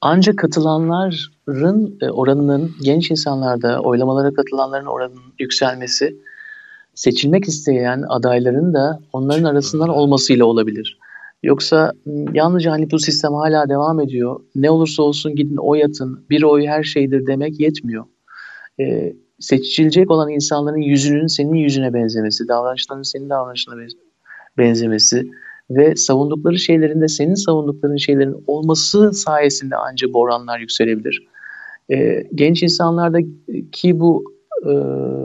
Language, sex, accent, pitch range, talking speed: Turkish, male, native, 135-170 Hz, 110 wpm